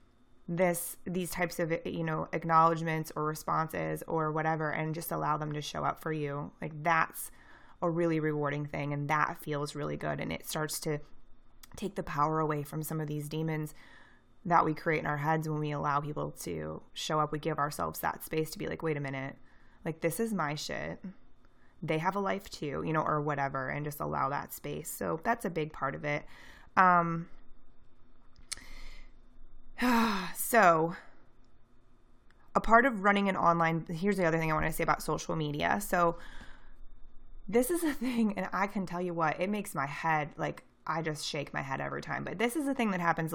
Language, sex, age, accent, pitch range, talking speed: English, female, 20-39, American, 145-170 Hz, 200 wpm